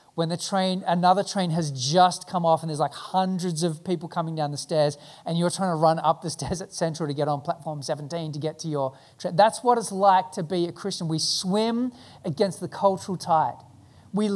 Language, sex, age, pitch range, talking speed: English, male, 30-49, 145-180 Hz, 225 wpm